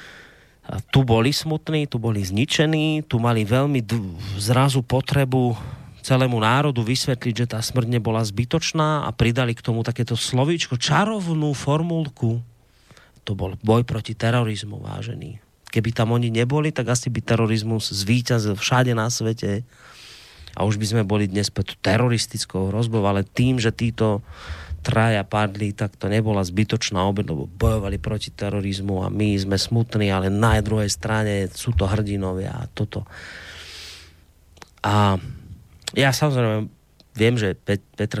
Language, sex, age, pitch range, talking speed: Slovak, male, 30-49, 100-125 Hz, 140 wpm